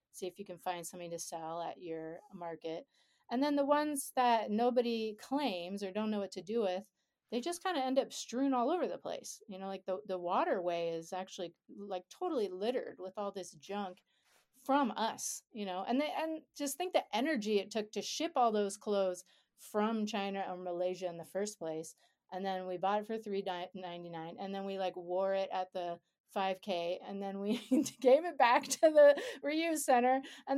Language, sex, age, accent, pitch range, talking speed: English, female, 30-49, American, 185-260 Hz, 205 wpm